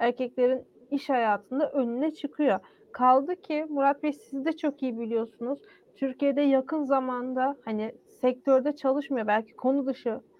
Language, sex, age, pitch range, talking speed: Turkish, female, 40-59, 245-290 Hz, 135 wpm